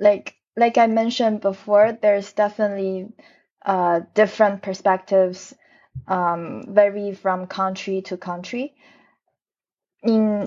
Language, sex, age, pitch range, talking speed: English, female, 20-39, 185-215 Hz, 95 wpm